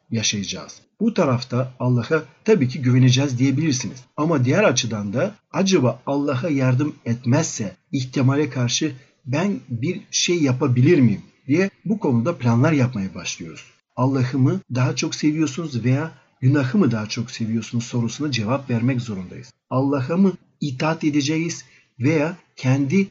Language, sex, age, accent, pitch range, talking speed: Turkish, male, 50-69, native, 120-150 Hz, 125 wpm